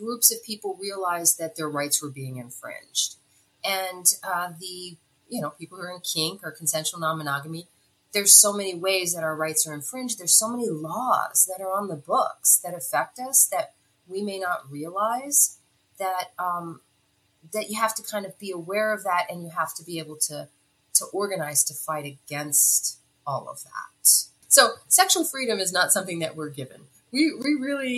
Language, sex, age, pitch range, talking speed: English, female, 30-49, 160-210 Hz, 190 wpm